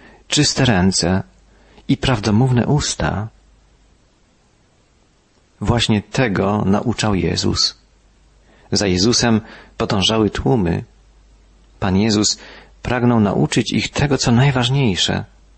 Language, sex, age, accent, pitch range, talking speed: Polish, male, 40-59, native, 95-120 Hz, 80 wpm